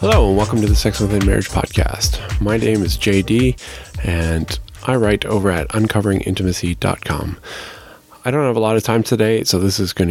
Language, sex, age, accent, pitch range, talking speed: English, male, 20-39, American, 90-110 Hz, 185 wpm